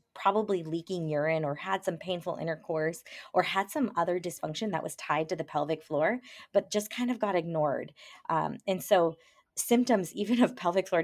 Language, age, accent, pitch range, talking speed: English, 20-39, American, 155-195 Hz, 185 wpm